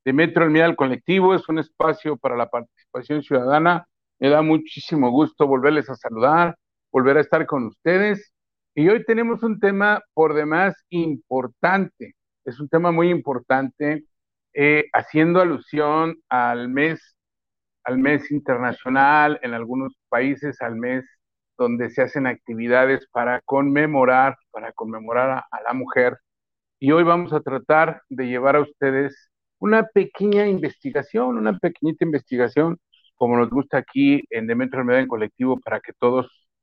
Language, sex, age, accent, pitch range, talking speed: Spanish, male, 50-69, Mexican, 125-165 Hz, 145 wpm